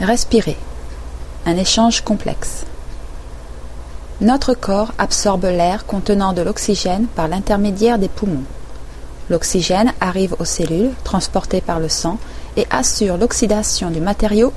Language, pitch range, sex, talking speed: French, 130-220 Hz, female, 115 wpm